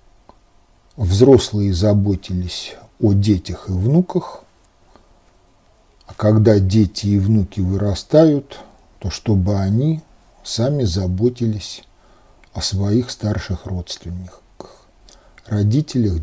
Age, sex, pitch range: 50-69, male, 100-120 Hz